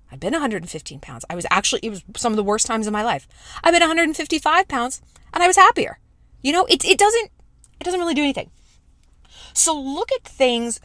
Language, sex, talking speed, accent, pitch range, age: English, female, 215 wpm, American, 175-270 Hz, 20-39